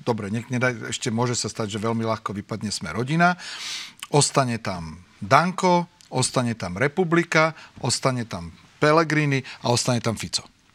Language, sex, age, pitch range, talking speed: Slovak, male, 40-59, 110-140 Hz, 140 wpm